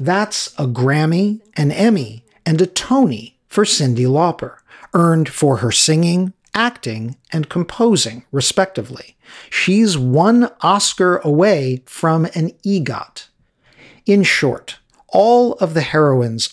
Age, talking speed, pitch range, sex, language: 50-69, 115 wpm, 140-190 Hz, male, English